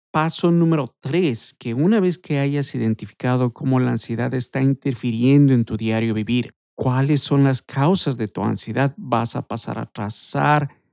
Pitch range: 120-155 Hz